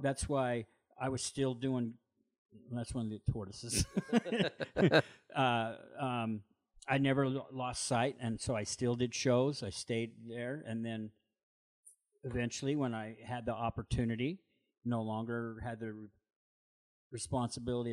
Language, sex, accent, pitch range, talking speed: English, male, American, 115-140 Hz, 130 wpm